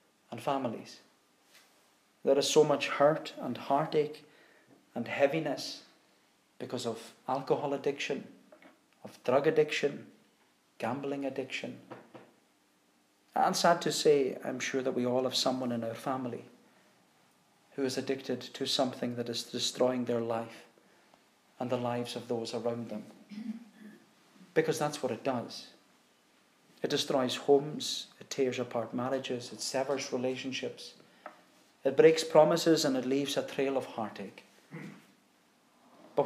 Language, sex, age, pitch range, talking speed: English, male, 40-59, 125-155 Hz, 125 wpm